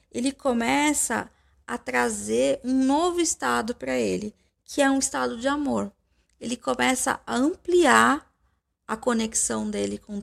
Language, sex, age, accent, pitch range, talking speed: Portuguese, female, 20-39, Brazilian, 215-285 Hz, 135 wpm